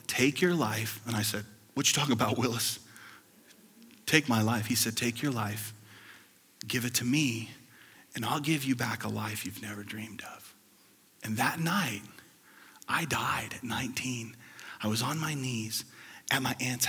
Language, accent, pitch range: English, American, 110-150 Hz